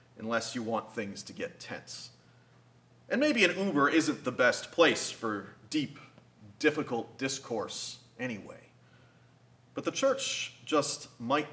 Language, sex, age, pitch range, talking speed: English, male, 30-49, 120-165 Hz, 130 wpm